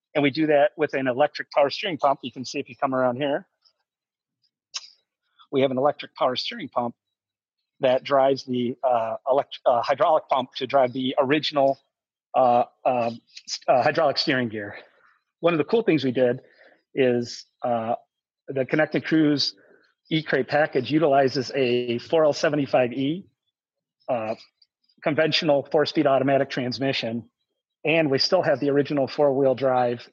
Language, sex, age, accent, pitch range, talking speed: English, male, 40-59, American, 130-150 Hz, 145 wpm